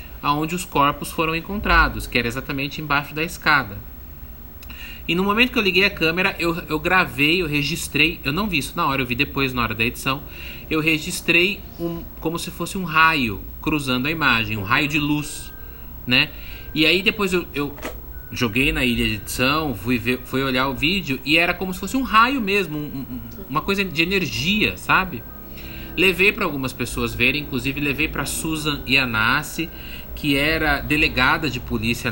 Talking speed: 185 wpm